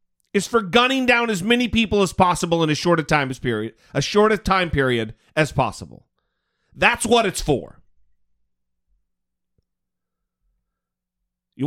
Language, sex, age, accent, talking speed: English, male, 40-59, American, 120 wpm